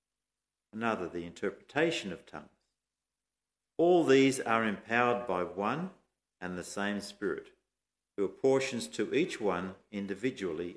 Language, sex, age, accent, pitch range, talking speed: English, male, 50-69, Australian, 95-130 Hz, 115 wpm